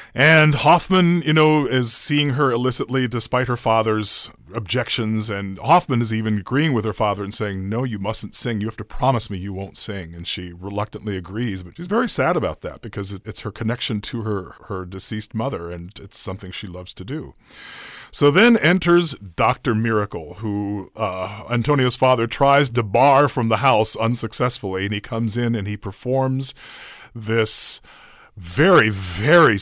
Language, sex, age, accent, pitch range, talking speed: English, male, 40-59, American, 105-135 Hz, 175 wpm